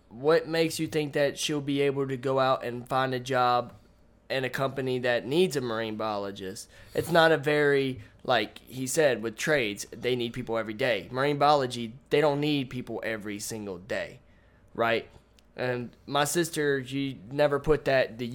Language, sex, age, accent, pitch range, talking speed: English, male, 20-39, American, 120-150 Hz, 180 wpm